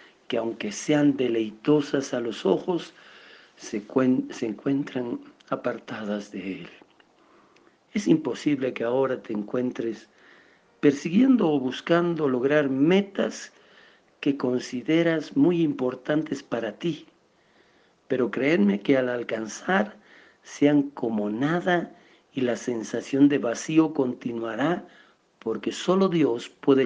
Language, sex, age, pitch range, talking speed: Spanish, male, 50-69, 120-160 Hz, 110 wpm